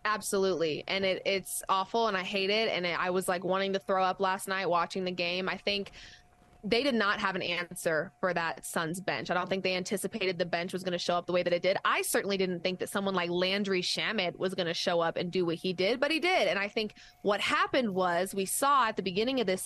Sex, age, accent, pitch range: female, 20-39, American, 185-225 Hz